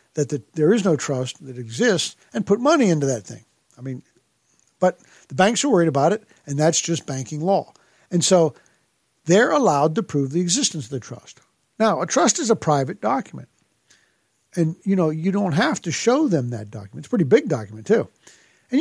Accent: American